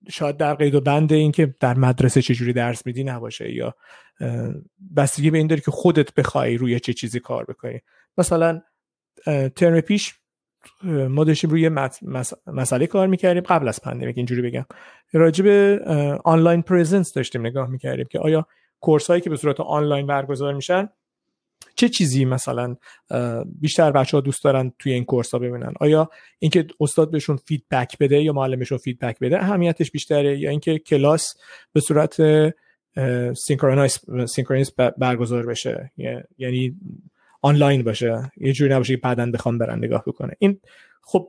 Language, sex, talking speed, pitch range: Persian, male, 155 wpm, 130-160 Hz